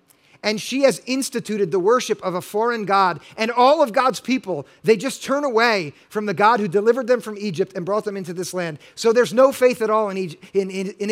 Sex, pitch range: male, 190-235 Hz